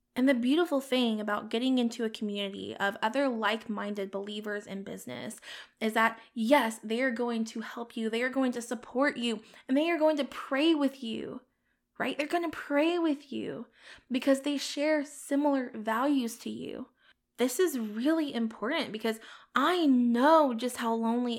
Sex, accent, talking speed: female, American, 175 wpm